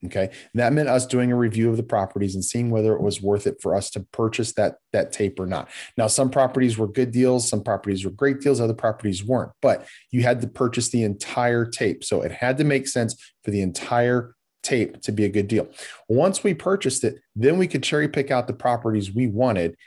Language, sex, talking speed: English, male, 235 wpm